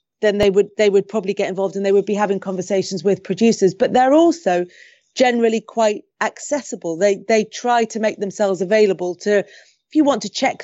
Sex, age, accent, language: female, 30-49, British, English